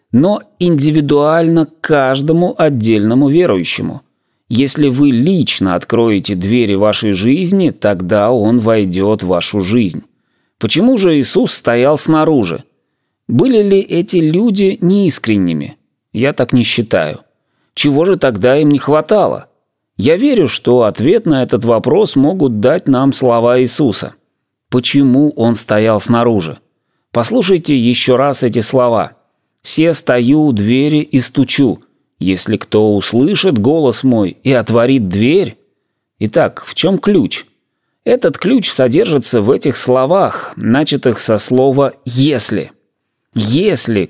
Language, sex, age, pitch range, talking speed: Russian, male, 30-49, 115-155 Hz, 120 wpm